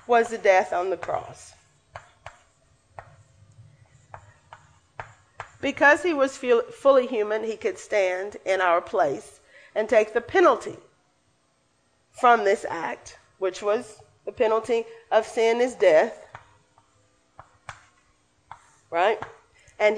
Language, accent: English, American